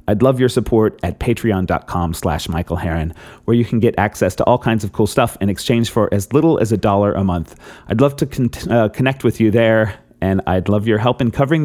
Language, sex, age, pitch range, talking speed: English, male, 30-49, 95-130 Hz, 225 wpm